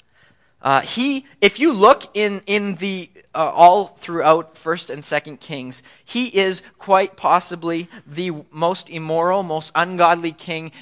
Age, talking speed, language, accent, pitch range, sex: 20-39, 140 wpm, English, American, 150-190 Hz, male